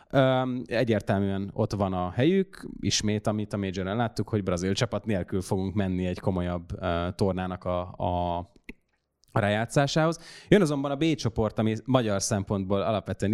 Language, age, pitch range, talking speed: Hungarian, 20-39, 100-120 Hz, 140 wpm